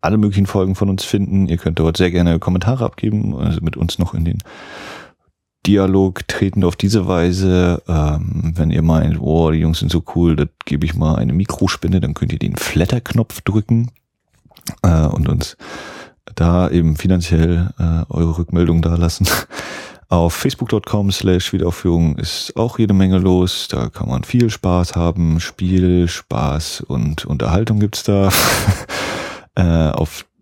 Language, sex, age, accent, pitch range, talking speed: German, male, 30-49, German, 80-100 Hz, 160 wpm